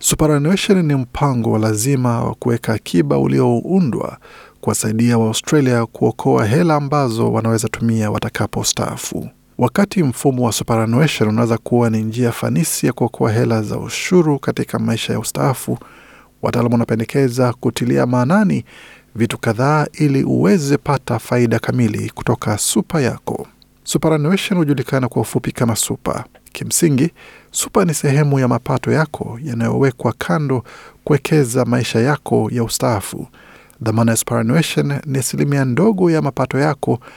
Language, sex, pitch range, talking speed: Swahili, male, 115-145 Hz, 125 wpm